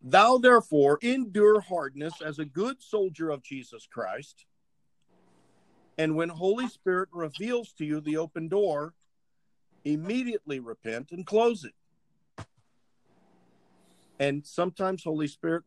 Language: English